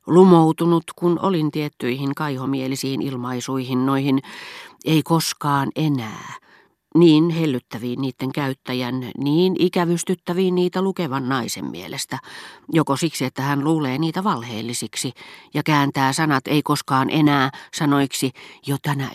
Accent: native